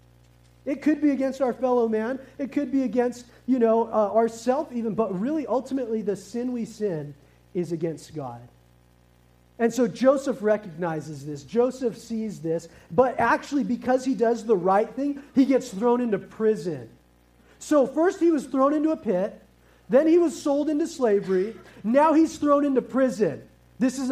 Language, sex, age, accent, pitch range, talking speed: English, male, 40-59, American, 195-265 Hz, 170 wpm